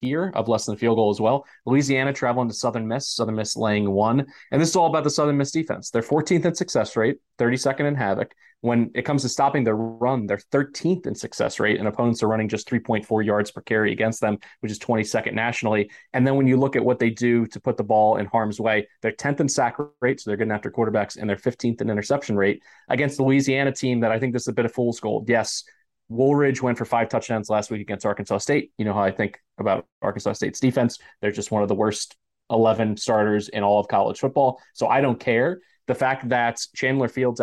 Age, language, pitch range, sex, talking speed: 30-49, English, 105-130 Hz, male, 240 wpm